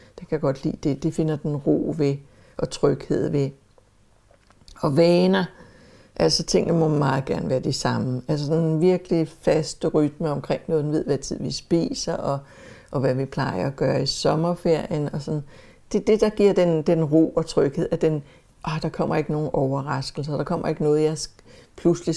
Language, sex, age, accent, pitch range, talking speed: English, female, 60-79, Danish, 140-170 Hz, 190 wpm